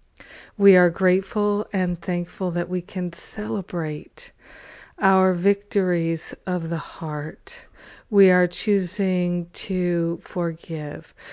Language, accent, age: English, American, 50-69